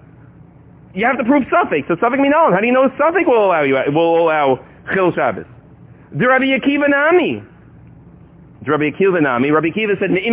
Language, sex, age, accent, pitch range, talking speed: English, male, 30-49, American, 170-260 Hz, 175 wpm